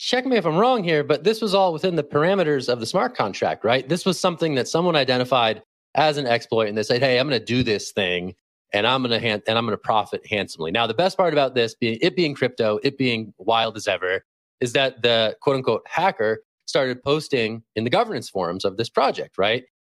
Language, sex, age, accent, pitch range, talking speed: English, male, 30-49, American, 120-155 Hz, 230 wpm